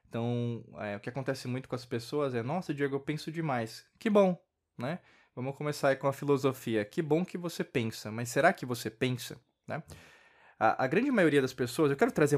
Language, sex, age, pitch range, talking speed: Portuguese, male, 20-39, 125-160 Hz, 210 wpm